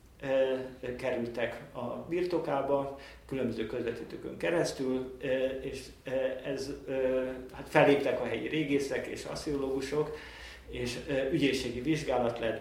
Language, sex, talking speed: Hungarian, male, 115 wpm